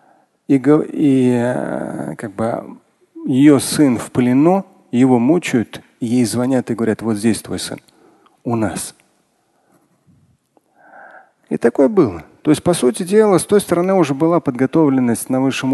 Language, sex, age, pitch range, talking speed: Russian, male, 40-59, 125-180 Hz, 135 wpm